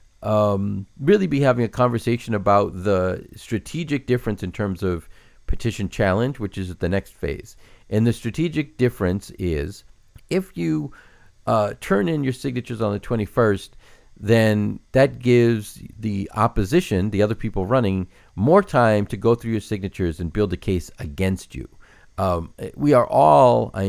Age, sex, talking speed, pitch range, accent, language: 50-69, male, 160 wpm, 95-115 Hz, American, English